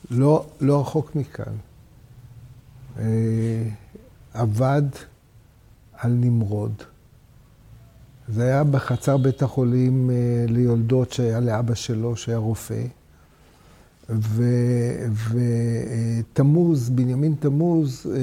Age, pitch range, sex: 60-79, 120-150 Hz, male